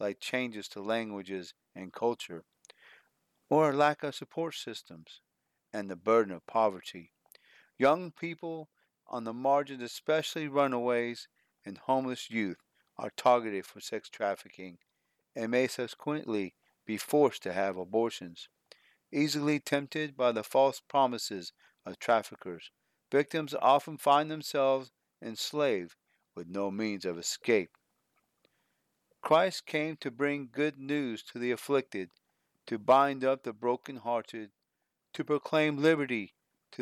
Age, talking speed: 40-59, 125 wpm